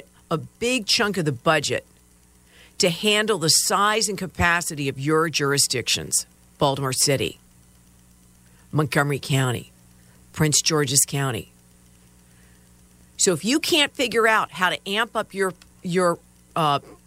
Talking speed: 125 wpm